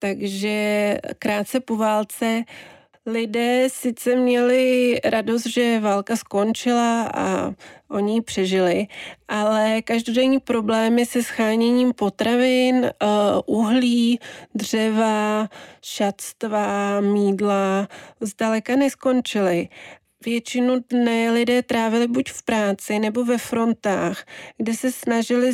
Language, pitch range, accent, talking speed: Czech, 210-240 Hz, native, 95 wpm